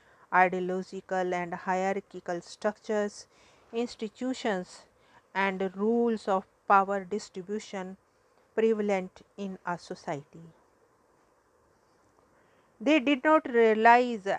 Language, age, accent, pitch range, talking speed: English, 50-69, Indian, 190-230 Hz, 75 wpm